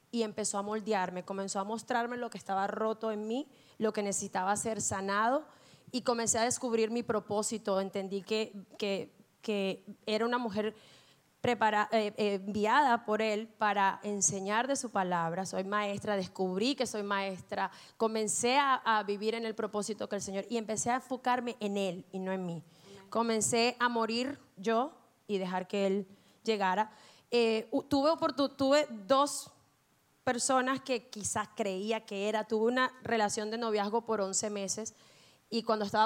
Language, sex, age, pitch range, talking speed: English, female, 30-49, 195-230 Hz, 165 wpm